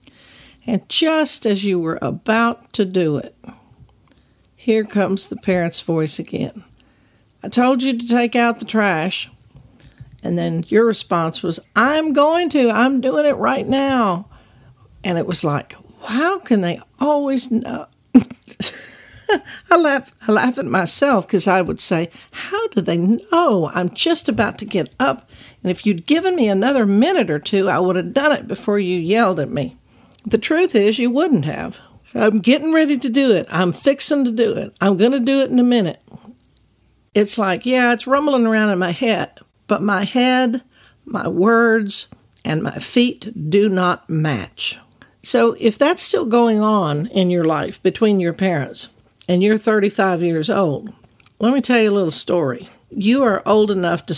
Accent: American